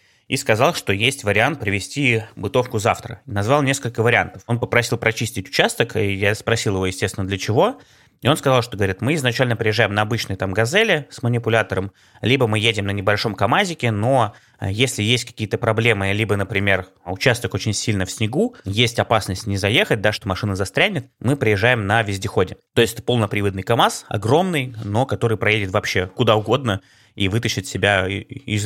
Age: 20-39